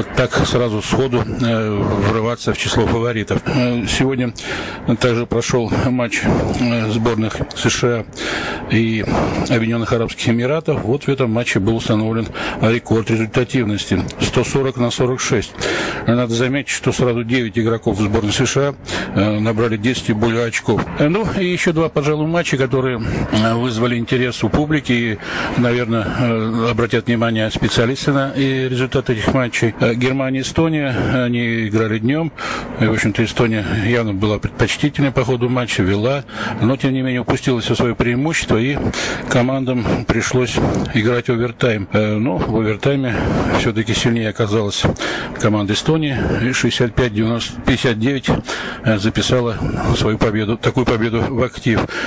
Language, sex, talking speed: Russian, male, 120 wpm